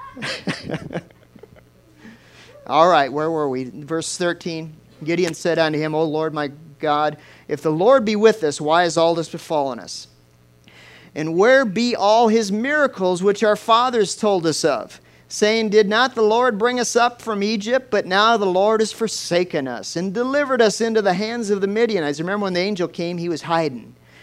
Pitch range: 150-215 Hz